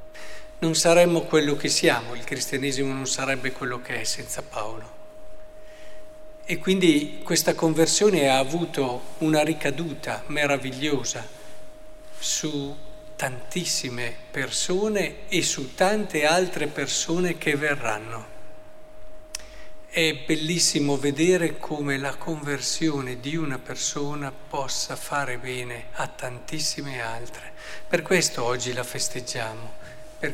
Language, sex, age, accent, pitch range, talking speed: Italian, male, 50-69, native, 130-170 Hz, 105 wpm